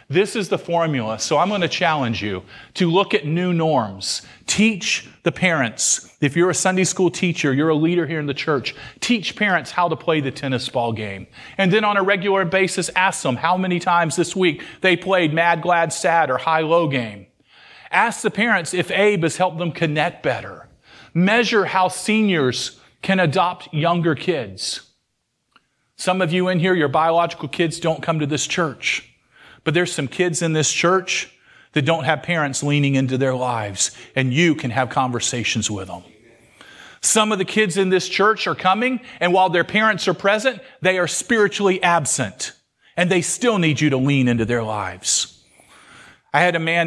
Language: English